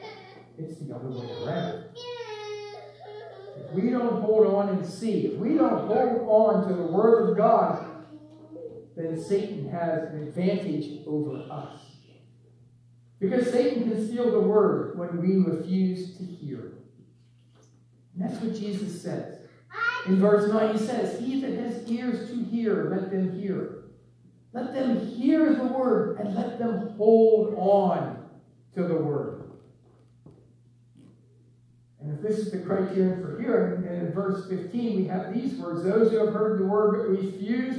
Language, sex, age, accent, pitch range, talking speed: English, male, 60-79, American, 160-225 Hz, 150 wpm